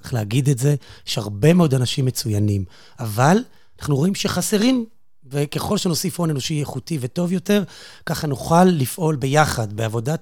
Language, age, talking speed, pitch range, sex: Hebrew, 30-49, 140 wpm, 120-155 Hz, male